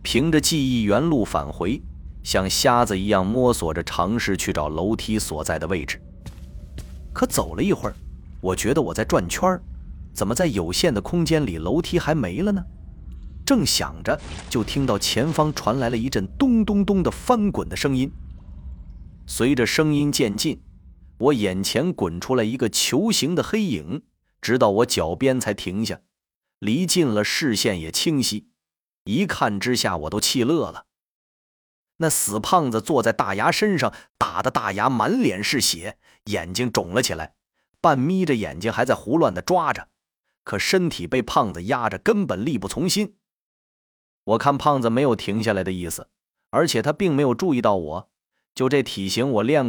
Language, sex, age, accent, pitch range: Chinese, male, 30-49, native, 90-145 Hz